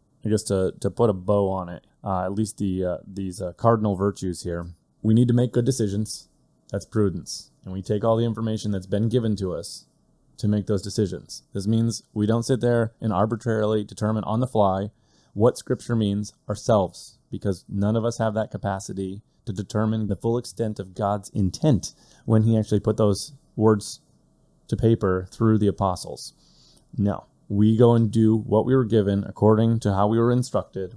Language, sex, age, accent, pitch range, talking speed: English, male, 30-49, American, 100-115 Hz, 190 wpm